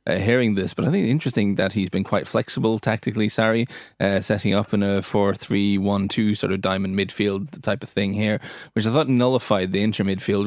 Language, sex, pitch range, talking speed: English, male, 100-115 Hz, 205 wpm